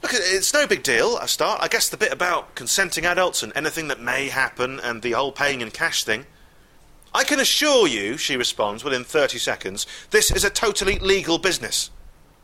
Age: 30-49